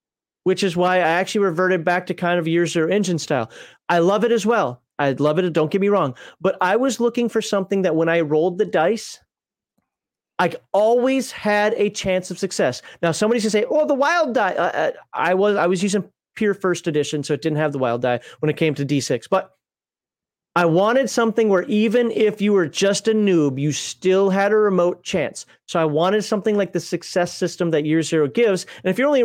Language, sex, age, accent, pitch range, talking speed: English, male, 30-49, American, 170-220 Hz, 225 wpm